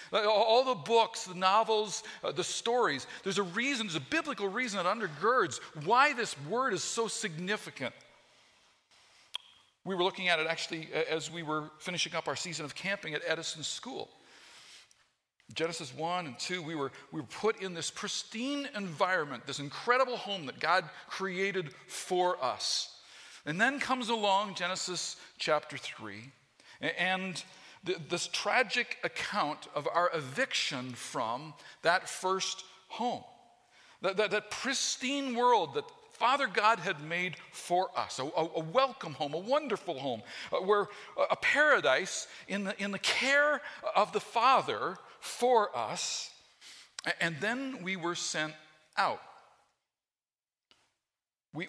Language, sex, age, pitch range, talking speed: English, male, 50-69, 160-220 Hz, 135 wpm